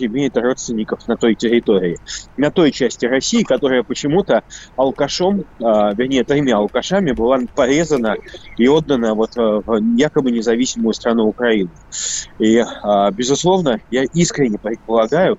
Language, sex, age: Russian, male, 20-39